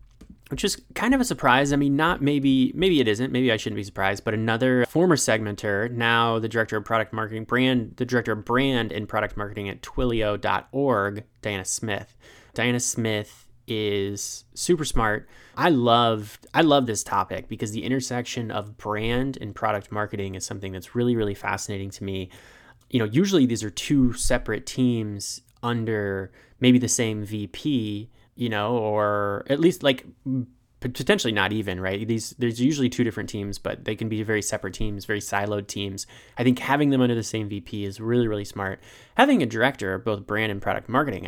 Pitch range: 105-125 Hz